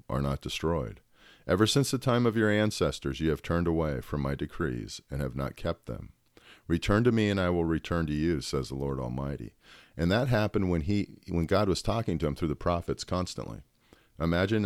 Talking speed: 210 wpm